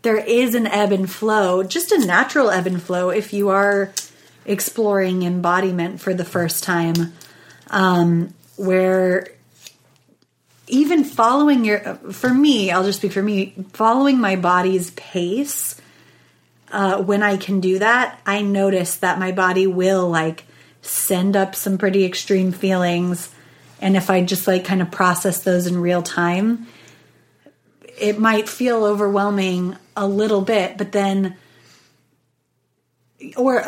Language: English